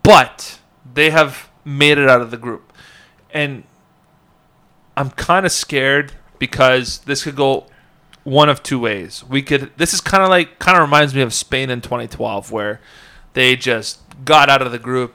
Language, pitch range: English, 120-145 Hz